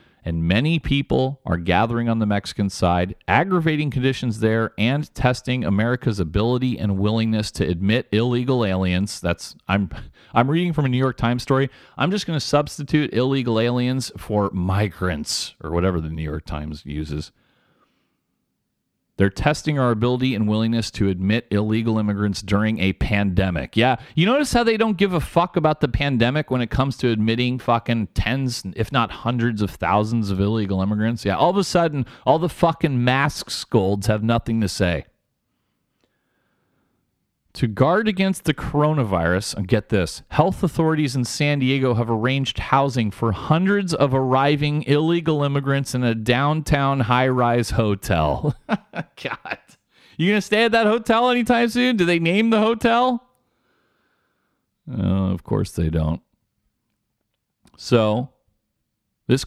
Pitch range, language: 100-145 Hz, English